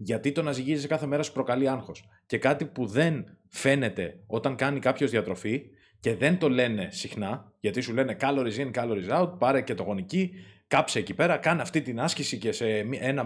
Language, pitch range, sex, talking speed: Greek, 105-145 Hz, male, 200 wpm